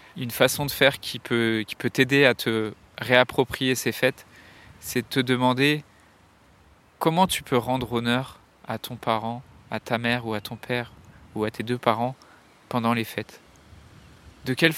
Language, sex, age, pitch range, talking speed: French, male, 20-39, 115-135 Hz, 170 wpm